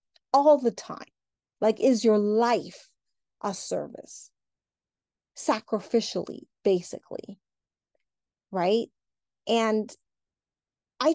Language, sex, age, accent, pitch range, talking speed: English, female, 30-49, American, 200-265 Hz, 75 wpm